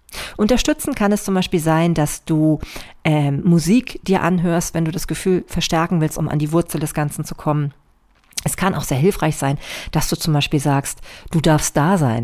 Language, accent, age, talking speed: German, German, 40-59, 200 wpm